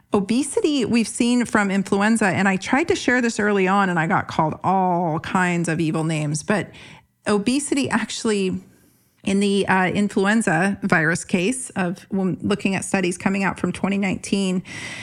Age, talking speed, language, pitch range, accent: 40-59, 155 wpm, English, 180-215 Hz, American